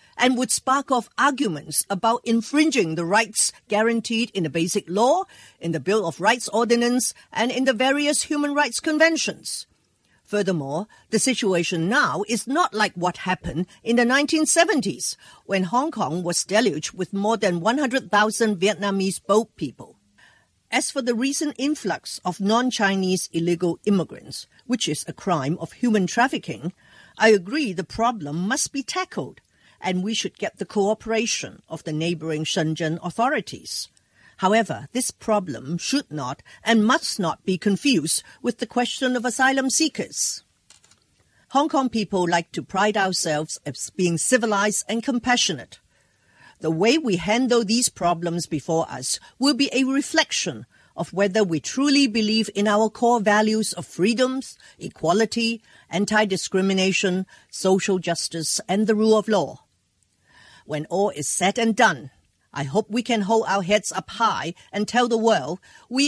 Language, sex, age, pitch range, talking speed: English, female, 50-69, 175-240 Hz, 150 wpm